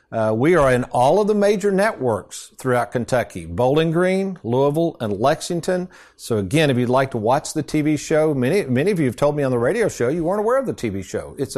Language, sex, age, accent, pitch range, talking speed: English, male, 50-69, American, 115-155 Hz, 235 wpm